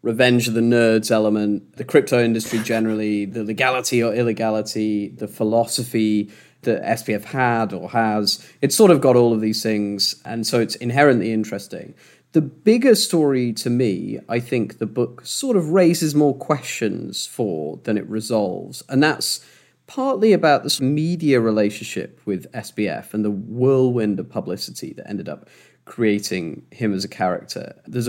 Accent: British